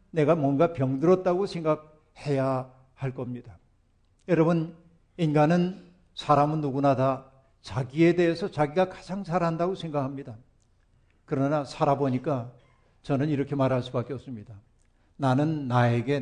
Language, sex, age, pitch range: Korean, male, 60-79, 125-175 Hz